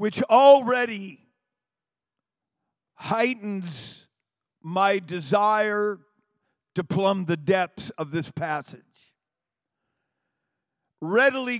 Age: 50-69